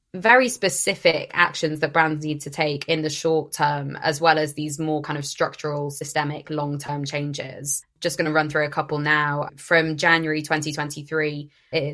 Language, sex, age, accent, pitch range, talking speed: English, female, 20-39, British, 145-165 Hz, 175 wpm